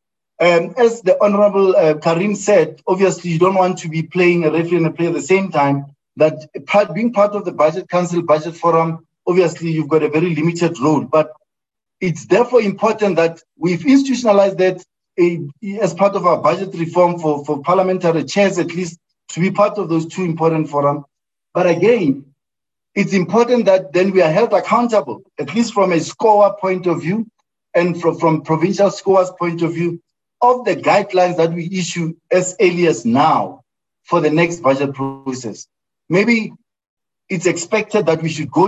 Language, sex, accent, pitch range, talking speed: English, male, South African, 160-200 Hz, 180 wpm